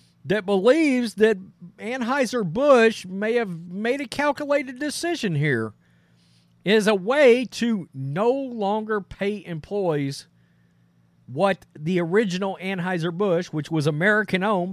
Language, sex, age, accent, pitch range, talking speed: English, male, 40-59, American, 150-220 Hz, 105 wpm